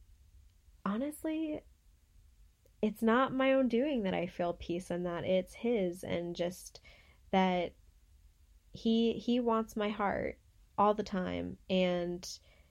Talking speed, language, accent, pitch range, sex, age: 125 wpm, English, American, 155-195 Hz, female, 10-29